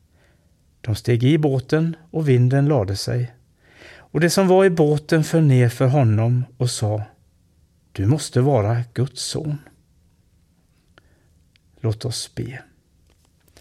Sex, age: male, 60-79